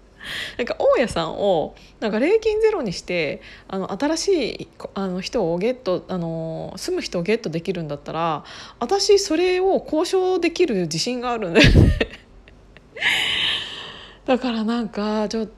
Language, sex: Japanese, female